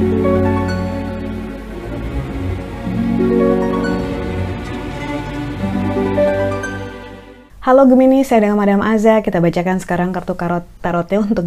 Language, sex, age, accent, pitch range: Indonesian, female, 30-49, native, 165-205 Hz